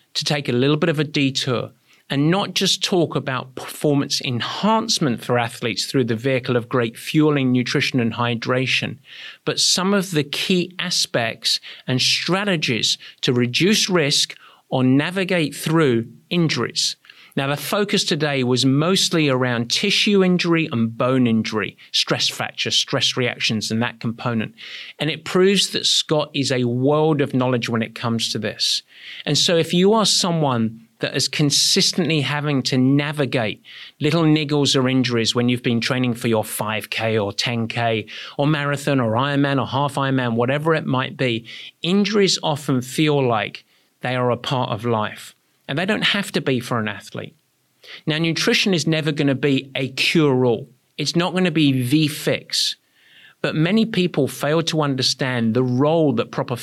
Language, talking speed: English, 165 wpm